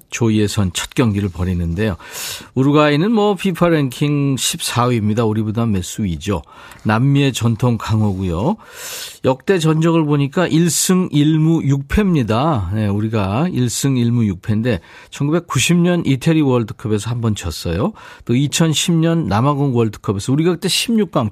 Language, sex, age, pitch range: Korean, male, 50-69, 110-165 Hz